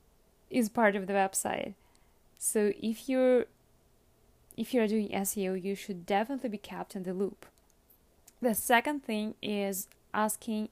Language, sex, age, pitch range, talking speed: English, female, 20-39, 200-230 Hz, 140 wpm